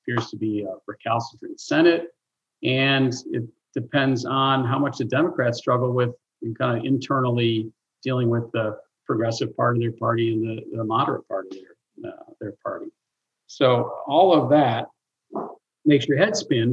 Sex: male